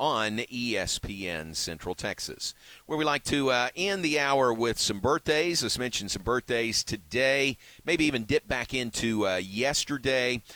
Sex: male